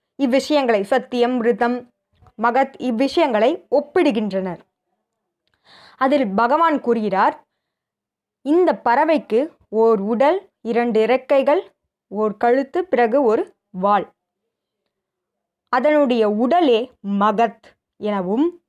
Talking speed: 75 wpm